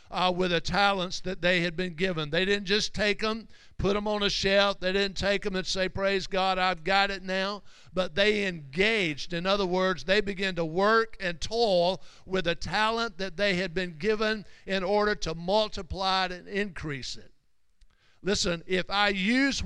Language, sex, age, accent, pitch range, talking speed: English, male, 60-79, American, 175-205 Hz, 190 wpm